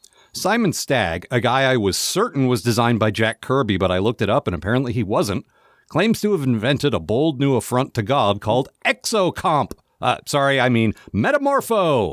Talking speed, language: 190 wpm, English